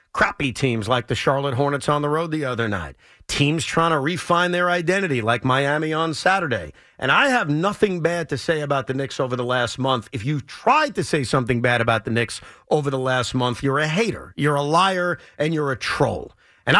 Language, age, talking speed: English, 40-59, 220 wpm